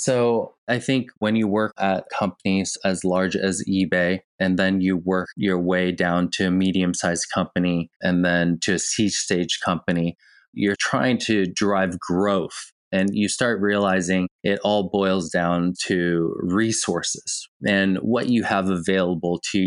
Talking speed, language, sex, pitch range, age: 155 wpm, English, male, 90-110 Hz, 20-39